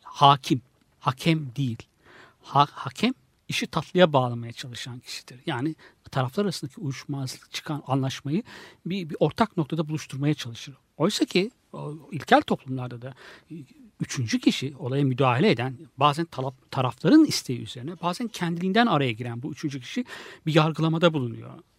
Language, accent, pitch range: Turkish, native, 135-190 Hz